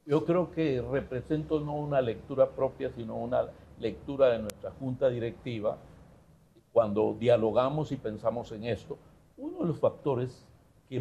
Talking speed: 140 wpm